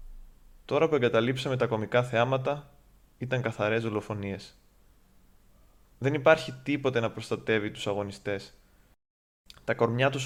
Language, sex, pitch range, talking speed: Greek, male, 110-135 Hz, 110 wpm